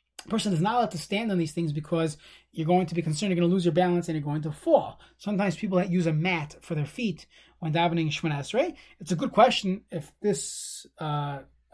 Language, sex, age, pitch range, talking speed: English, male, 30-49, 165-205 Hz, 235 wpm